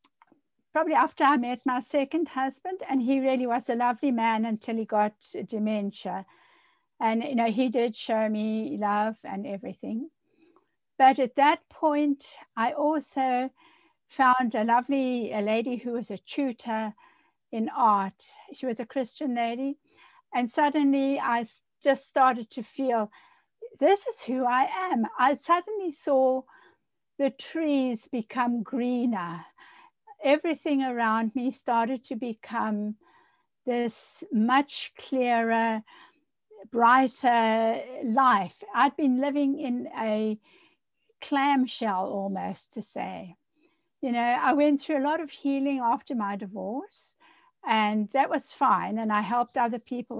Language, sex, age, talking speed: English, female, 60-79, 130 wpm